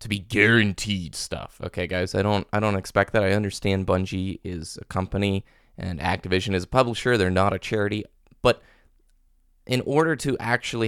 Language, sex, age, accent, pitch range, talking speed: English, male, 20-39, American, 95-115 Hz, 175 wpm